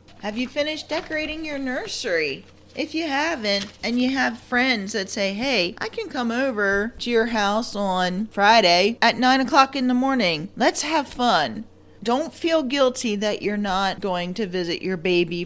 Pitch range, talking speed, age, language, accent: 185-255 Hz, 175 wpm, 40-59, English, American